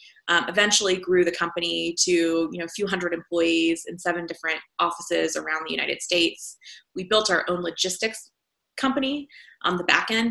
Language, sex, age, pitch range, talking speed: English, female, 20-39, 175-210 Hz, 175 wpm